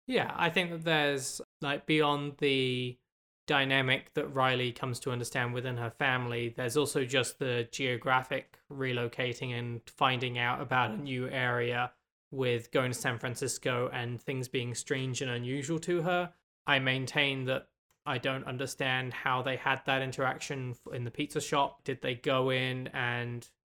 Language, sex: English, male